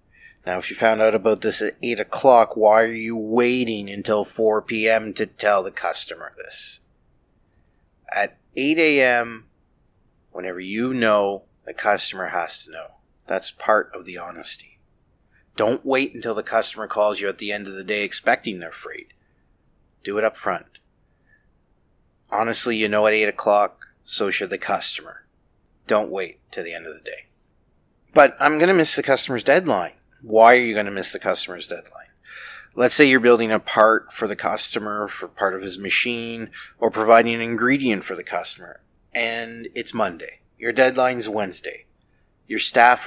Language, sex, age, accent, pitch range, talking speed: English, male, 30-49, American, 105-120 Hz, 170 wpm